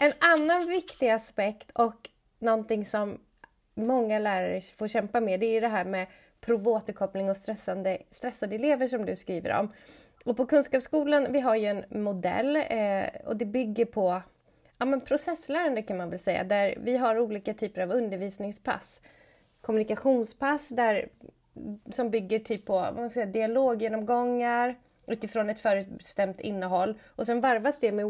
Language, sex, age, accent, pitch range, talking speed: Swedish, female, 30-49, native, 190-245 Hz, 155 wpm